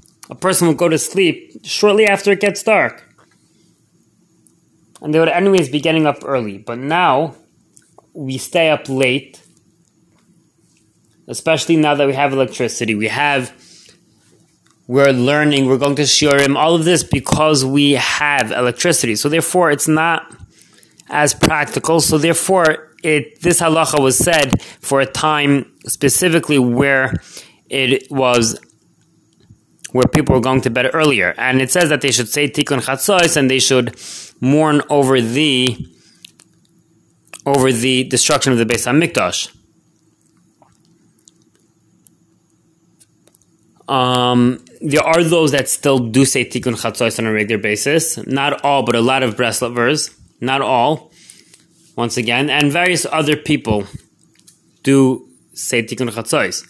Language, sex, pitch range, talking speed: English, male, 125-160 Hz, 135 wpm